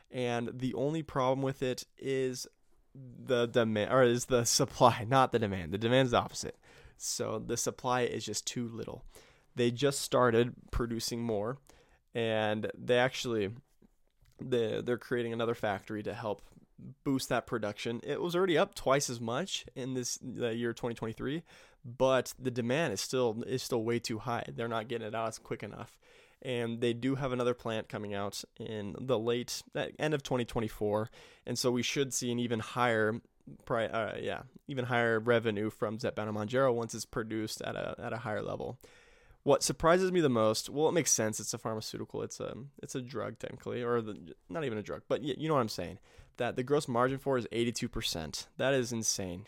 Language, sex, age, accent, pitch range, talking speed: English, male, 20-39, American, 115-130 Hz, 185 wpm